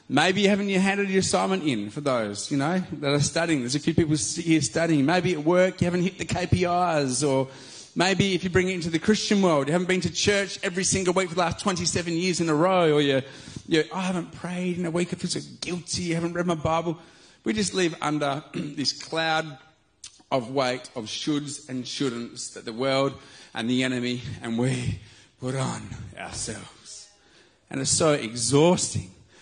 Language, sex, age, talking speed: English, male, 30-49, 200 wpm